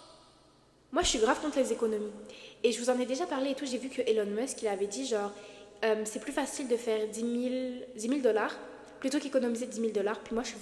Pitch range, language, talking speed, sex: 220-270 Hz, French, 235 wpm, female